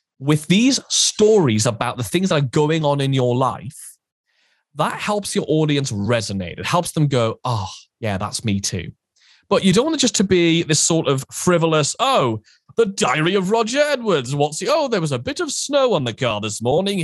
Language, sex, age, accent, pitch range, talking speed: English, male, 30-49, British, 115-170 Hz, 210 wpm